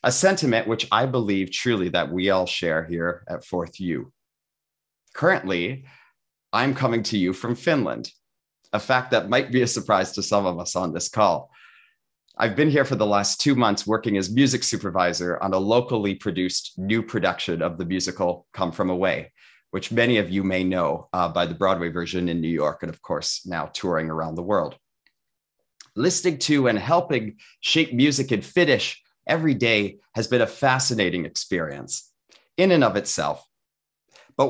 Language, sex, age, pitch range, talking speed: English, male, 30-49, 95-135 Hz, 175 wpm